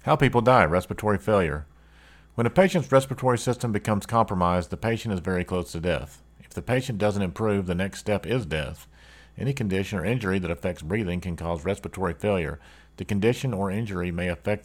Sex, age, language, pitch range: male, 40-59, English, 85-105 Hz